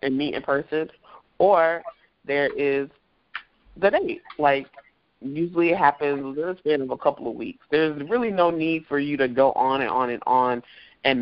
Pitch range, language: 125-155 Hz, English